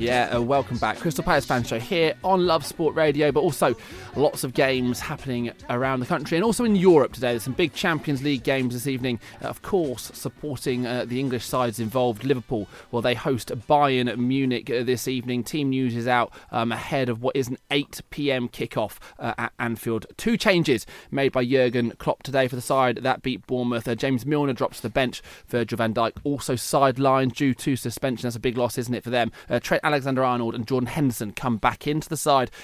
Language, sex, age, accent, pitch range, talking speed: English, male, 20-39, British, 120-140 Hz, 210 wpm